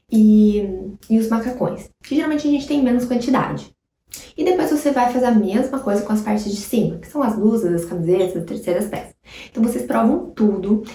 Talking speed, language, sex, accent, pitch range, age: 205 wpm, Portuguese, female, Brazilian, 200-250 Hz, 20-39